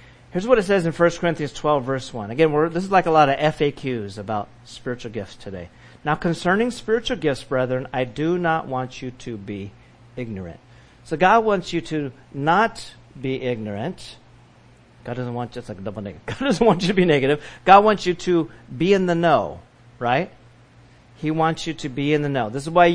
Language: English